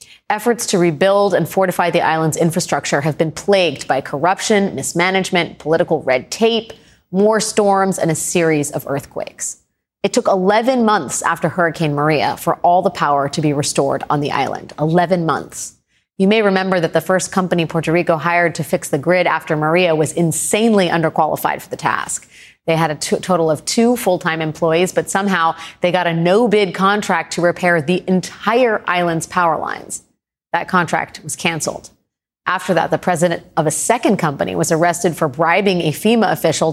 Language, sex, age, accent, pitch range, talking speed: English, female, 30-49, American, 165-195 Hz, 175 wpm